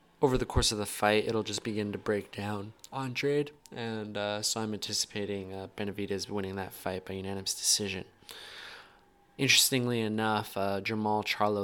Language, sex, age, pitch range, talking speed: English, male, 20-39, 100-115 Hz, 160 wpm